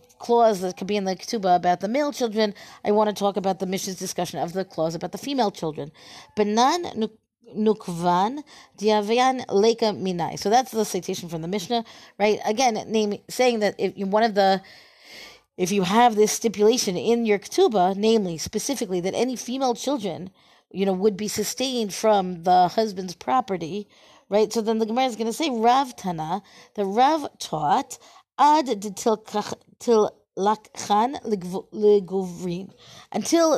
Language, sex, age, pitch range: English, female, 40-59, 185-230 Hz